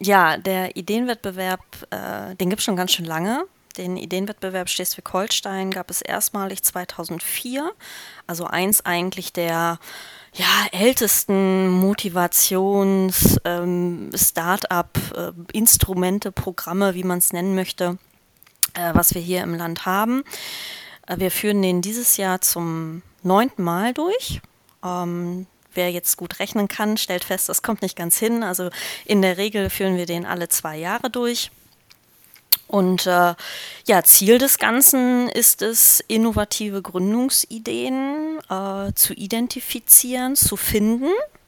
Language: German